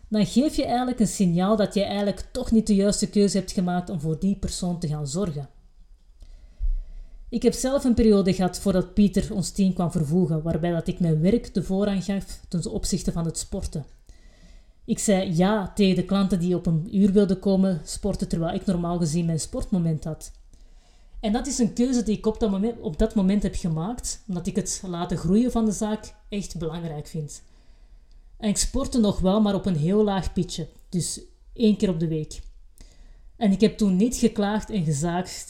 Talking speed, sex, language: 195 wpm, female, Dutch